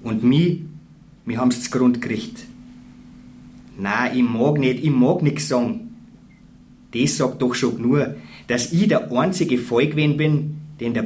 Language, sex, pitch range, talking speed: German, male, 125-190 Hz, 150 wpm